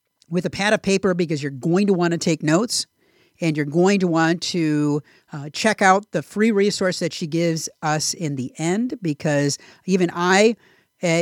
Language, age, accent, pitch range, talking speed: English, 50-69, American, 155-210 Hz, 195 wpm